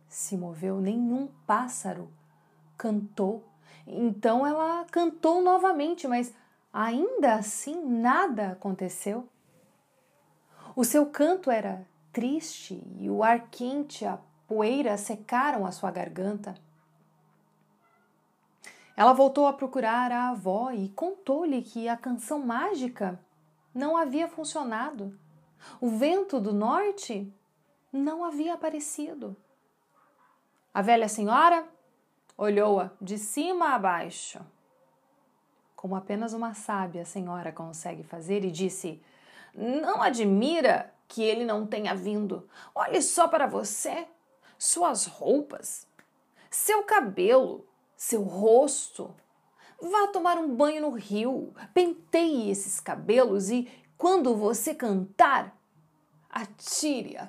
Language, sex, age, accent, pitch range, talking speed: Portuguese, female, 30-49, Brazilian, 195-300 Hz, 105 wpm